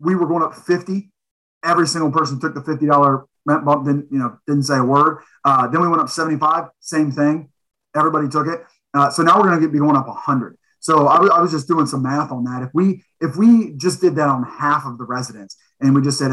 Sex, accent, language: male, American, English